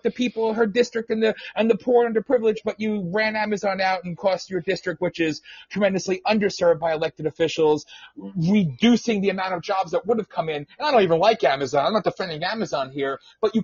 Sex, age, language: male, 30-49, English